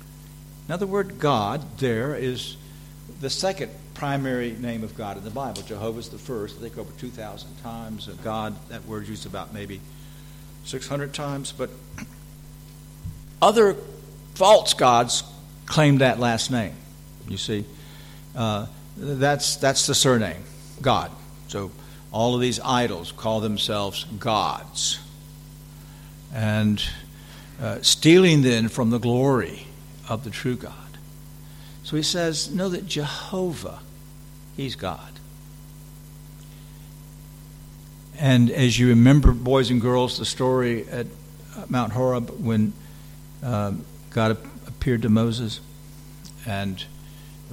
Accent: American